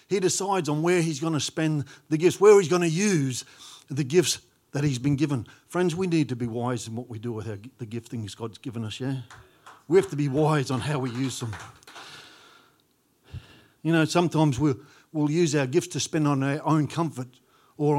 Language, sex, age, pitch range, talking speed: English, male, 50-69, 125-165 Hz, 215 wpm